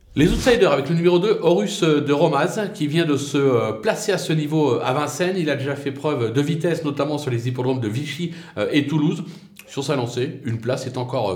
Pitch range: 125-165 Hz